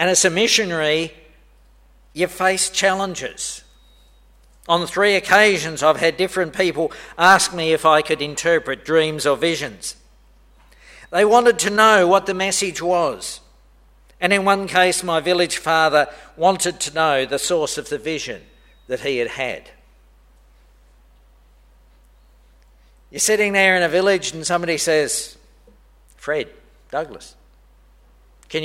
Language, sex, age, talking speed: English, male, 50-69, 130 wpm